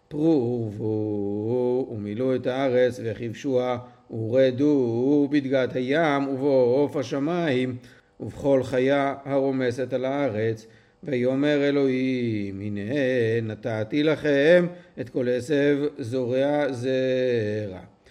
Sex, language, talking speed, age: male, Hebrew, 80 wpm, 50-69